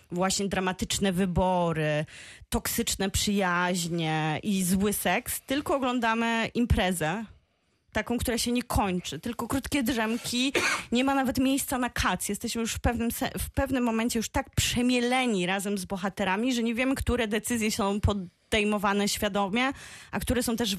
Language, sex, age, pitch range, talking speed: Polish, female, 20-39, 180-230 Hz, 140 wpm